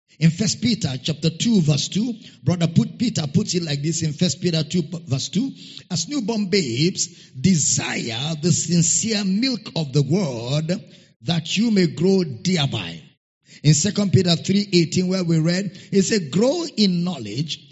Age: 50-69